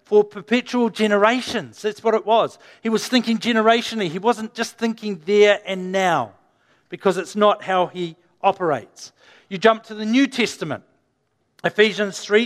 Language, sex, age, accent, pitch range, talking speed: English, male, 50-69, Australian, 185-225 Hz, 155 wpm